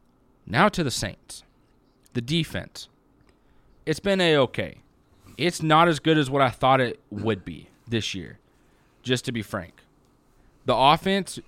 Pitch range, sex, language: 115-150 Hz, male, English